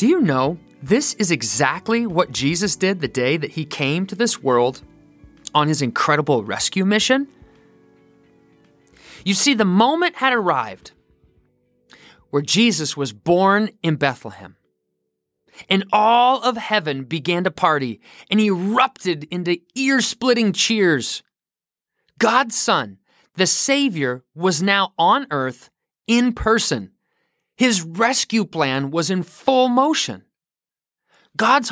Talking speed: 125 wpm